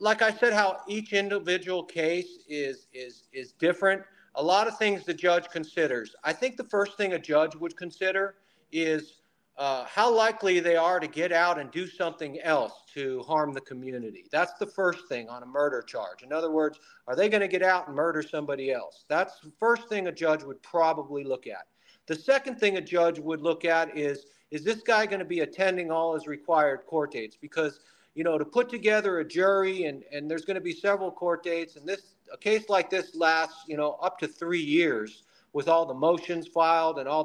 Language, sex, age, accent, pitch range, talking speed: English, male, 50-69, American, 155-195 Hz, 215 wpm